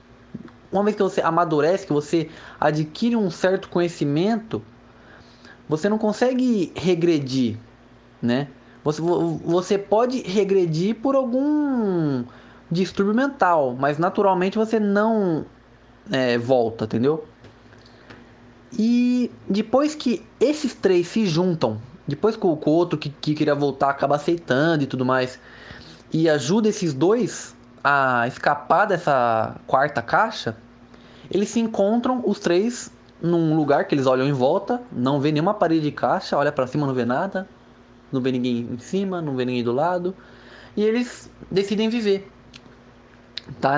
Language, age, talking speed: Portuguese, 20-39, 135 wpm